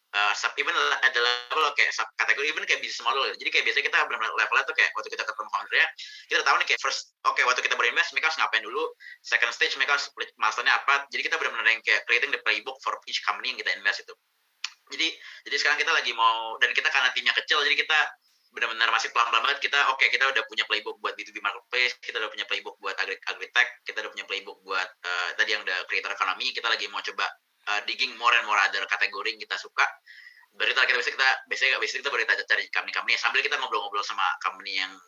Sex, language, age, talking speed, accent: male, Indonesian, 20-39, 220 wpm, native